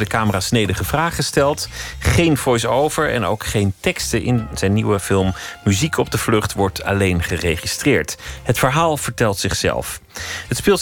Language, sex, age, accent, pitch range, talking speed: Dutch, male, 40-59, Dutch, 95-130 Hz, 155 wpm